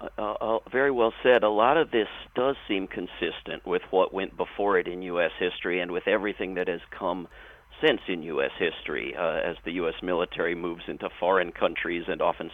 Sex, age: male, 50-69